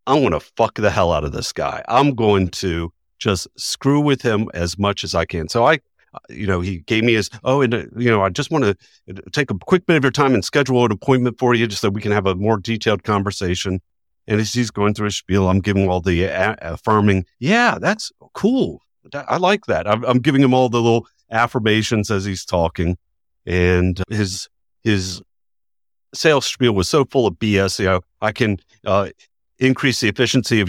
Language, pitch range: English, 90-115 Hz